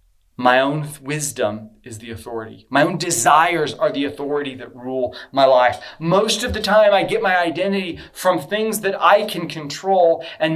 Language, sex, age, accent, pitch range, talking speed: English, male, 30-49, American, 115-170 Hz, 175 wpm